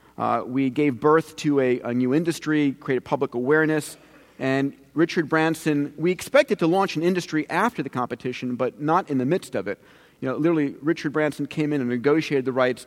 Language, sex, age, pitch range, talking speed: English, male, 40-59, 130-160 Hz, 195 wpm